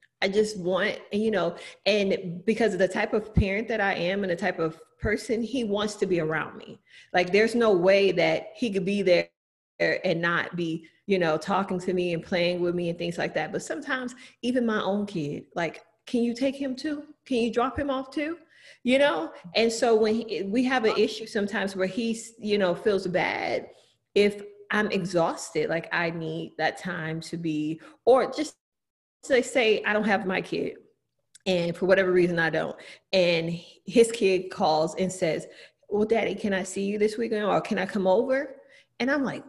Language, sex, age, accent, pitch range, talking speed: English, female, 30-49, American, 175-235 Hz, 200 wpm